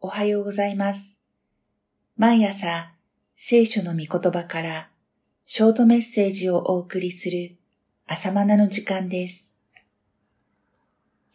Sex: female